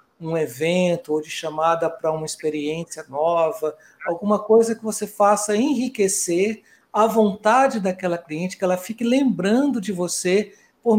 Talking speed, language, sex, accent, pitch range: 140 wpm, Portuguese, male, Brazilian, 170-215 Hz